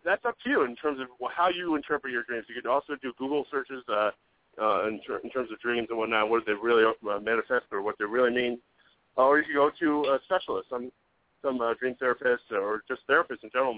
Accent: American